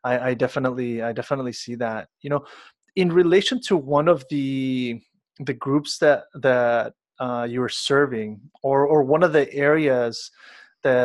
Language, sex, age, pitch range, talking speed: English, male, 30-49, 130-150 Hz, 160 wpm